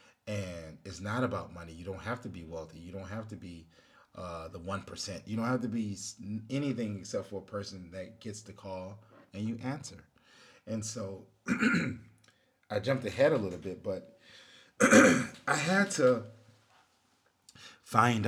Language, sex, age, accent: English, male, 30-49, American